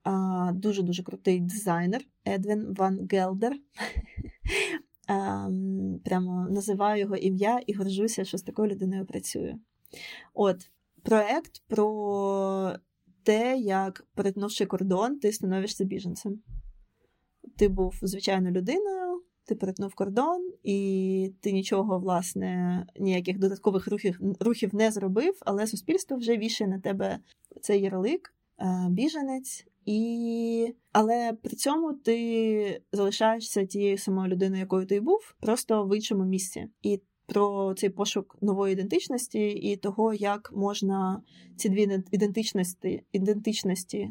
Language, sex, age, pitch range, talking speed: Ukrainian, female, 20-39, 190-220 Hz, 115 wpm